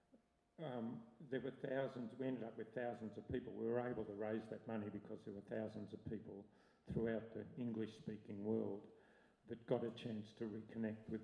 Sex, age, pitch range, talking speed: male, 50-69, 105-120 Hz, 185 wpm